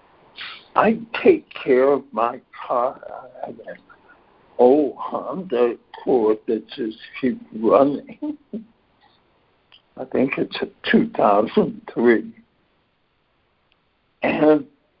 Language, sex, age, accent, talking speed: English, male, 60-79, American, 90 wpm